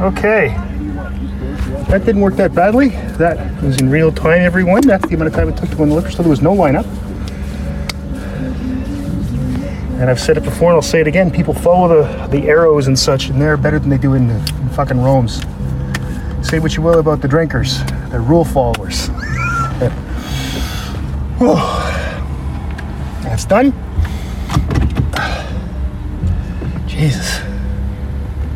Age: 40-59